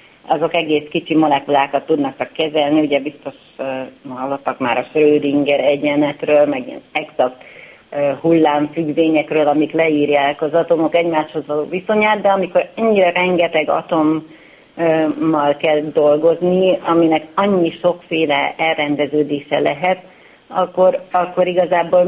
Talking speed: 105 wpm